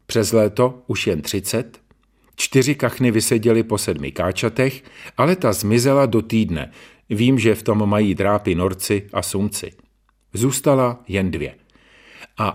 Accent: native